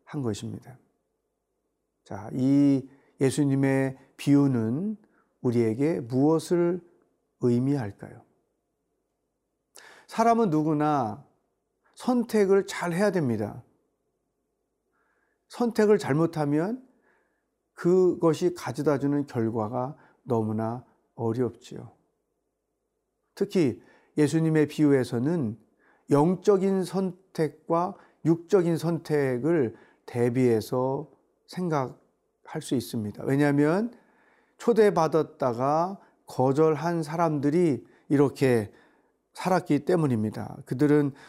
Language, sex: Korean, male